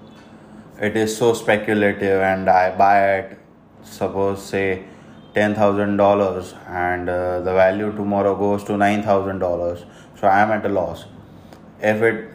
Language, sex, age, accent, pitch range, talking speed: English, male, 20-39, Indian, 100-110 Hz, 130 wpm